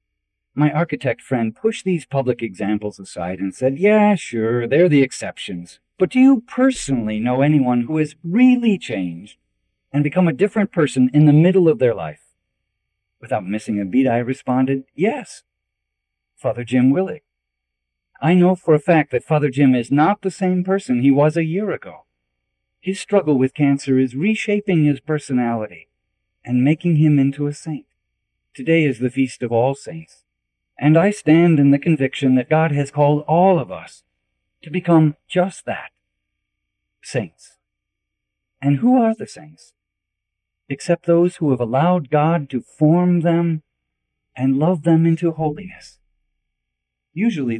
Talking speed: 155 wpm